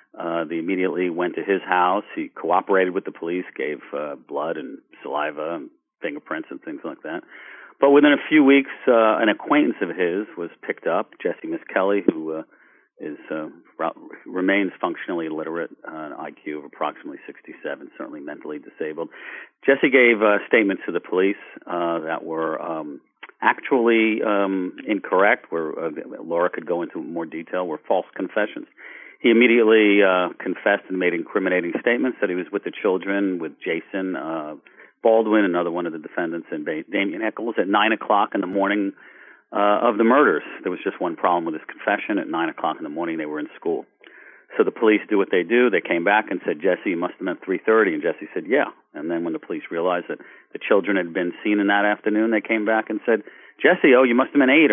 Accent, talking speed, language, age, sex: American, 195 wpm, English, 50-69, male